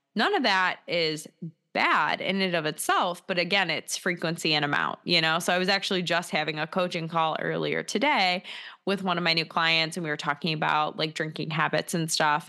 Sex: female